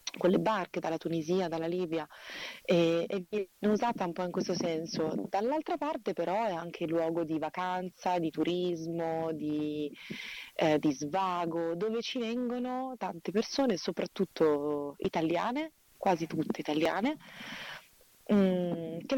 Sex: female